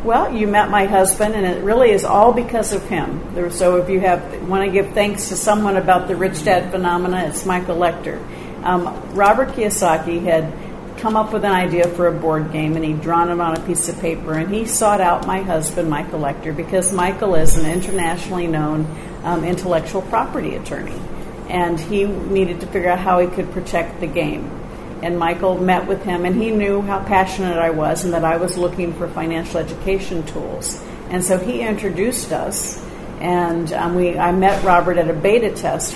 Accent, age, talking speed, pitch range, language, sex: American, 50-69, 200 wpm, 165-190 Hz, English, female